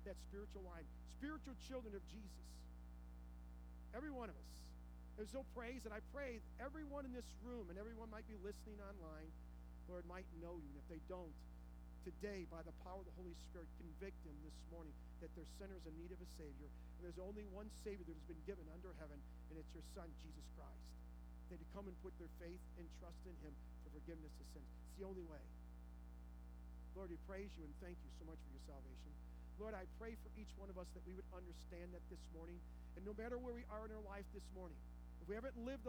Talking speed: 225 wpm